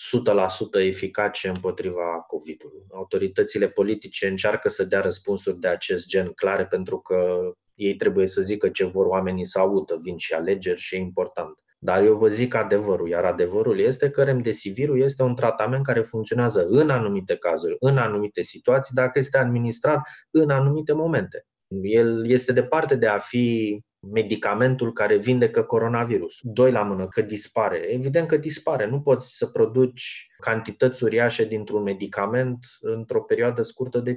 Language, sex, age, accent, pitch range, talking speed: Romanian, male, 20-39, native, 100-170 Hz, 155 wpm